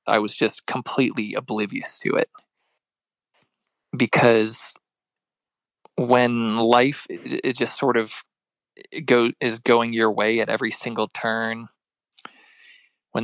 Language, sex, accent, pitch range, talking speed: English, male, American, 110-130 Hz, 110 wpm